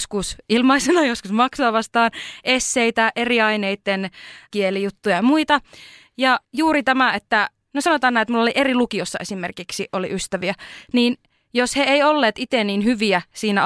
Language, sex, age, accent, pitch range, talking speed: Finnish, female, 20-39, native, 195-250 Hz, 155 wpm